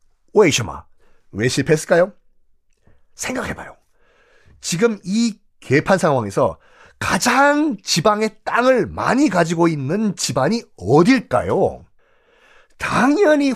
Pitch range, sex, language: 140-235 Hz, male, Korean